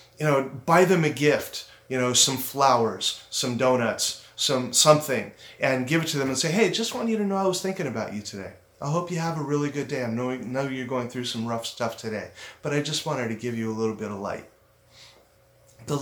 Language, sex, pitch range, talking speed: English, male, 125-160 Hz, 235 wpm